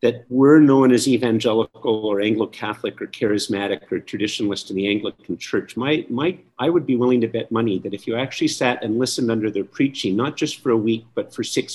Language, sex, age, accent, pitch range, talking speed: English, male, 50-69, American, 105-135 Hz, 210 wpm